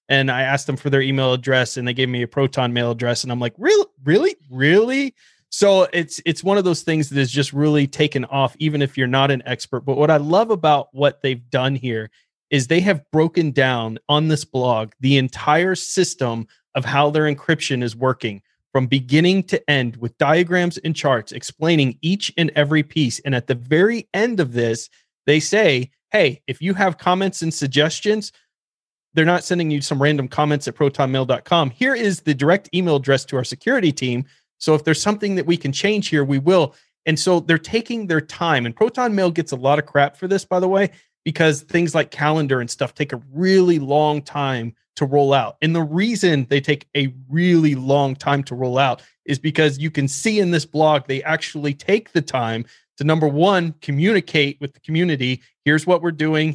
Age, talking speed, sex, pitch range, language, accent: 20-39, 205 wpm, male, 135-170 Hz, English, American